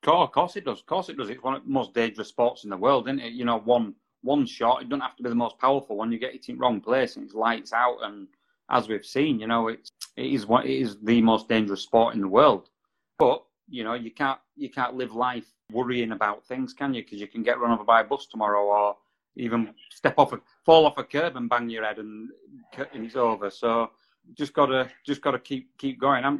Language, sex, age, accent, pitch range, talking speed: English, male, 30-49, British, 110-140 Hz, 255 wpm